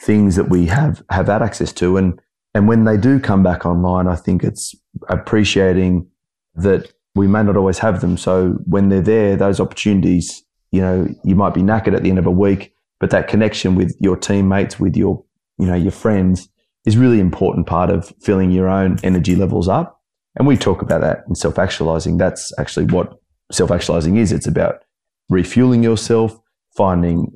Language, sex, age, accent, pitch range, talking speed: English, male, 30-49, Australian, 90-105 Hz, 190 wpm